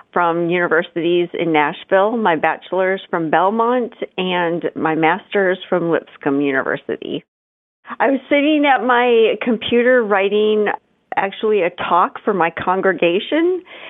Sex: female